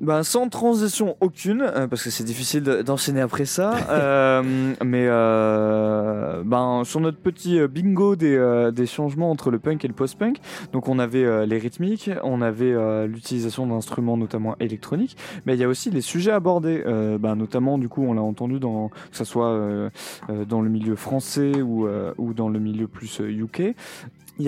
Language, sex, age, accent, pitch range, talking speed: French, male, 20-39, French, 115-145 Hz, 200 wpm